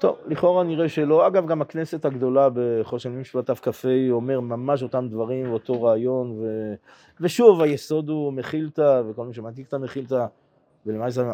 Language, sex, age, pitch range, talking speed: Hebrew, male, 30-49, 120-155 Hz, 155 wpm